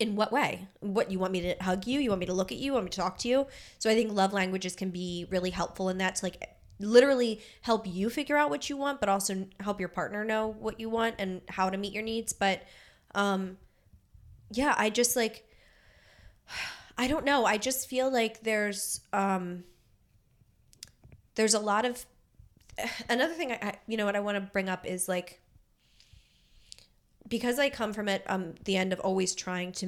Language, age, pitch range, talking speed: English, 20-39, 185-220 Hz, 205 wpm